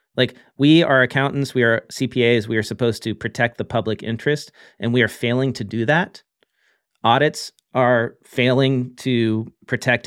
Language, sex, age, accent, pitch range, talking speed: English, male, 40-59, American, 110-125 Hz, 160 wpm